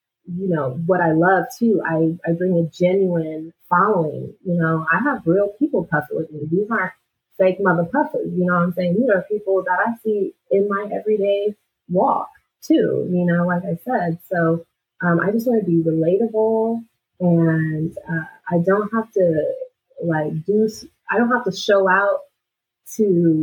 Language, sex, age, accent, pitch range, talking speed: English, female, 30-49, American, 170-215 Hz, 180 wpm